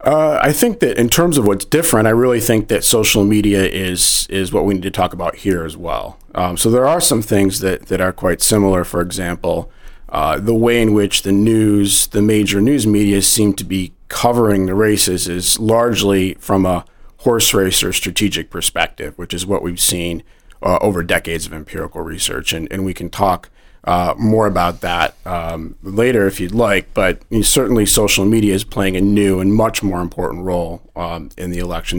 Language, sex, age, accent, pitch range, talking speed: English, male, 40-59, American, 90-110 Hz, 200 wpm